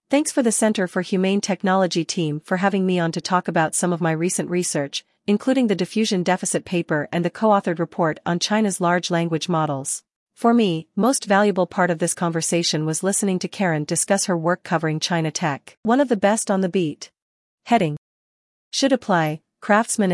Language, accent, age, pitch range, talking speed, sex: English, American, 40-59, 165-205 Hz, 190 wpm, female